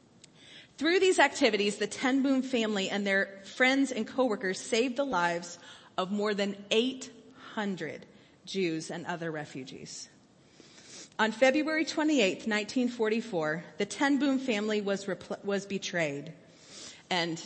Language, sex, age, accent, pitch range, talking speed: English, female, 30-49, American, 175-245 Hz, 120 wpm